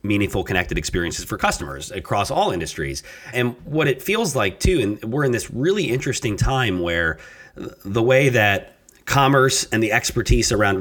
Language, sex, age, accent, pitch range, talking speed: English, male, 30-49, American, 95-120 Hz, 165 wpm